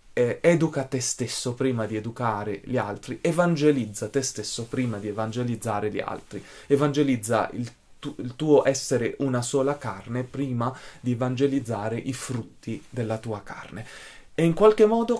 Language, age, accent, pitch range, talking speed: Italian, 20-39, native, 115-150 Hz, 140 wpm